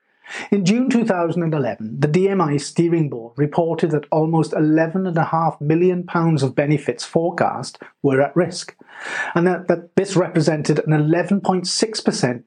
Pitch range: 140-185 Hz